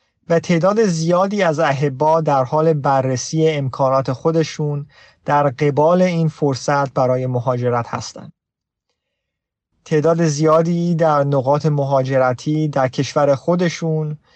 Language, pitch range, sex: Persian, 135-170 Hz, male